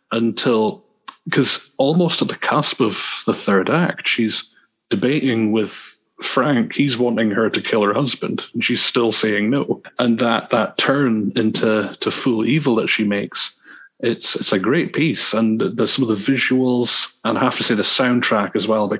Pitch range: 110-125 Hz